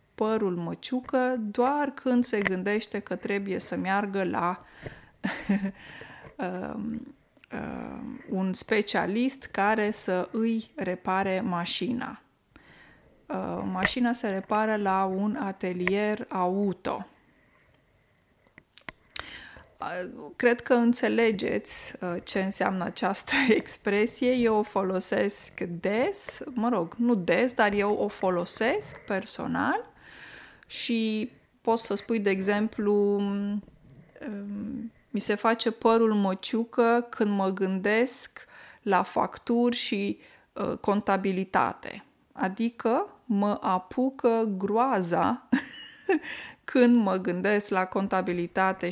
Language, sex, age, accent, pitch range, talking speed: Romanian, female, 20-39, native, 190-235 Hz, 90 wpm